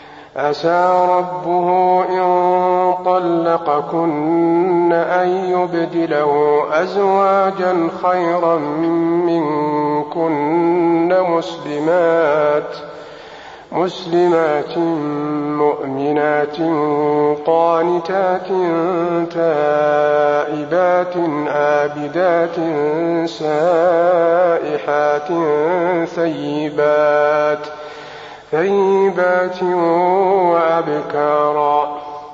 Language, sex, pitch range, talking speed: Arabic, male, 150-180 Hz, 35 wpm